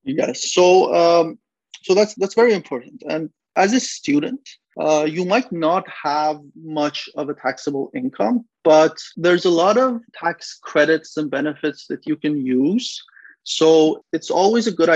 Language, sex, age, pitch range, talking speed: English, male, 30-49, 145-175 Hz, 160 wpm